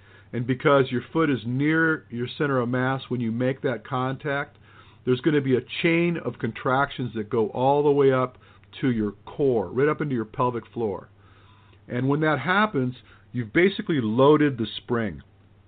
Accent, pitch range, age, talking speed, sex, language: American, 110-140 Hz, 50-69, 180 wpm, male, English